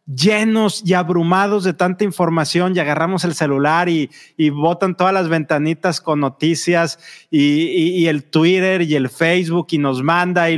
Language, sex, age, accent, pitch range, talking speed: Spanish, male, 30-49, Mexican, 160-210 Hz, 170 wpm